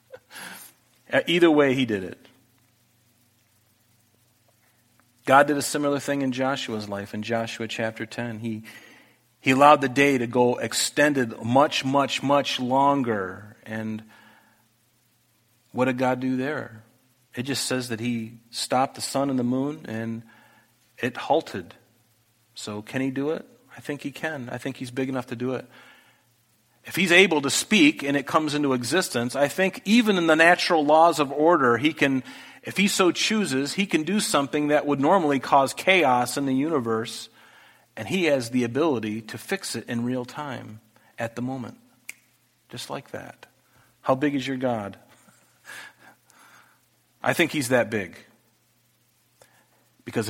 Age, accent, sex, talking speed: 40-59, American, male, 155 wpm